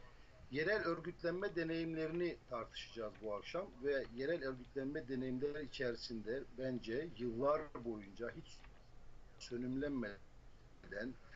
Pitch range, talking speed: 110-130 Hz, 85 wpm